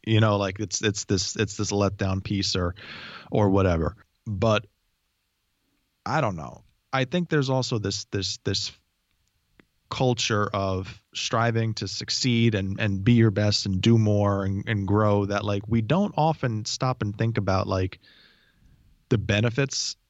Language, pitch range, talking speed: English, 95-120 Hz, 155 wpm